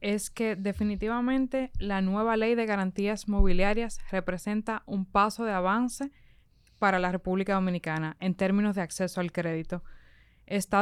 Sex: female